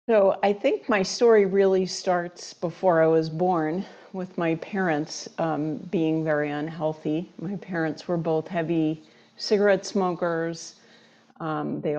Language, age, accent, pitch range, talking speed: English, 50-69, American, 155-190 Hz, 135 wpm